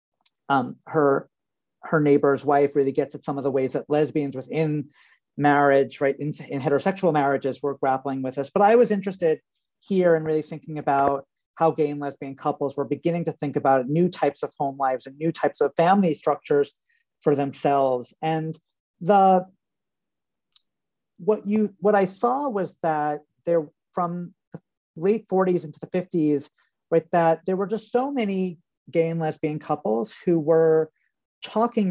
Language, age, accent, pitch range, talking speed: English, 40-59, American, 145-180 Hz, 165 wpm